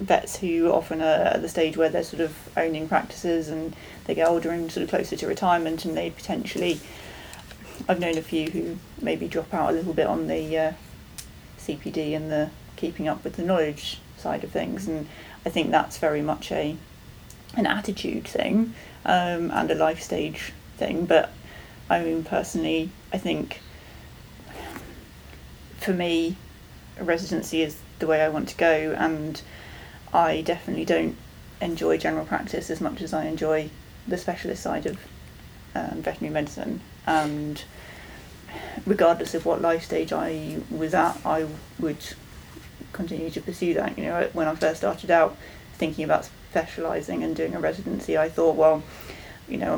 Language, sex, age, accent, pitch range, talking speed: English, female, 30-49, British, 155-165 Hz, 165 wpm